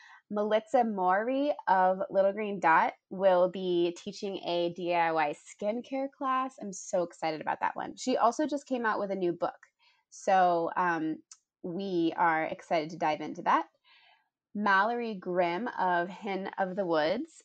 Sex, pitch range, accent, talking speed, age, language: female, 175-230 Hz, American, 150 wpm, 20-39, English